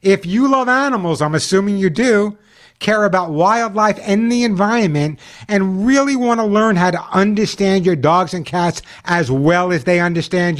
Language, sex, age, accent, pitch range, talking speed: English, male, 60-79, American, 170-235 Hz, 175 wpm